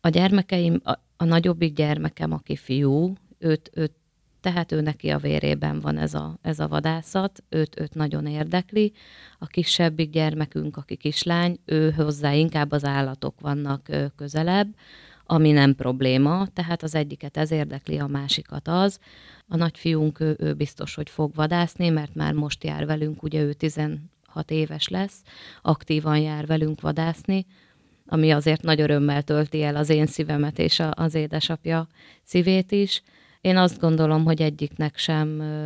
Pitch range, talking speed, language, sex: 150-175 Hz, 150 wpm, Hungarian, female